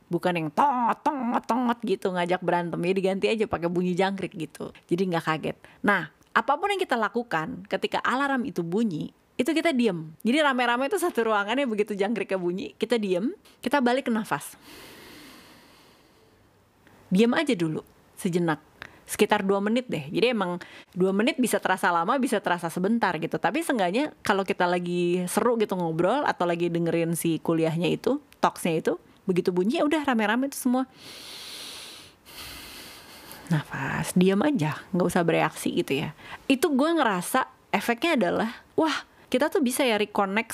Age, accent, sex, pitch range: 30-49, native, female, 180-240 Hz